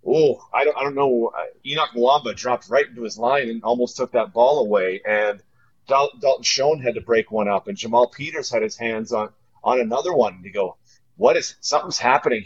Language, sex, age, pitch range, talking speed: English, male, 30-49, 115-130 Hz, 215 wpm